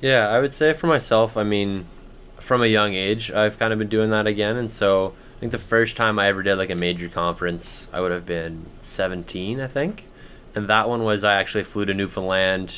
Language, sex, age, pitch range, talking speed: English, male, 20-39, 95-110 Hz, 230 wpm